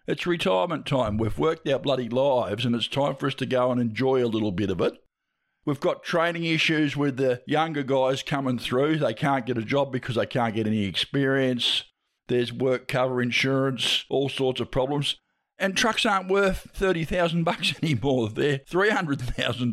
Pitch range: 120-145 Hz